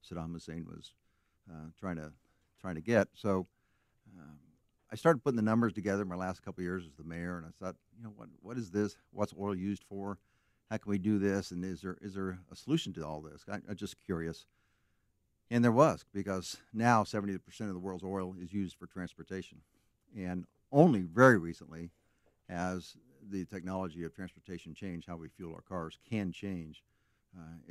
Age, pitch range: 60-79, 85-105 Hz